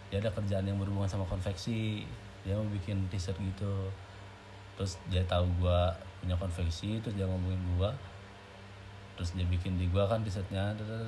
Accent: native